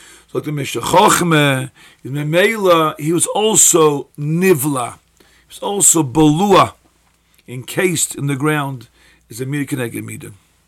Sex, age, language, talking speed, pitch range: male, 50-69, English, 100 wpm, 140-180 Hz